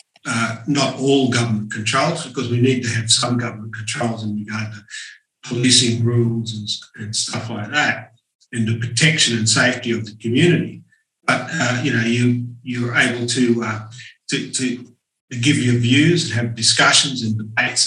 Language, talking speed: English, 170 wpm